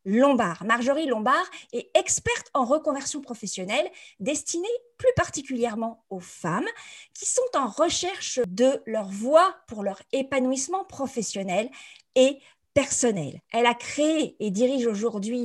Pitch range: 230-315 Hz